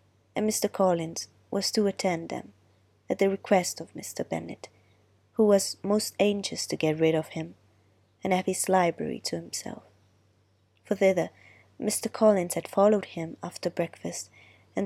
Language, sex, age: Italian, female, 20-39